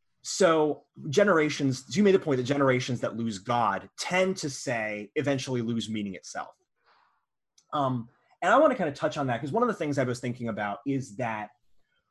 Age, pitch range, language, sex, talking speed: 30-49, 115-145 Hz, English, male, 195 wpm